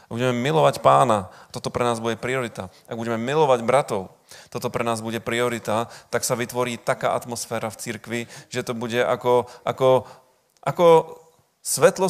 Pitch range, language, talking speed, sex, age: 110-125 Hz, Slovak, 155 wpm, male, 30-49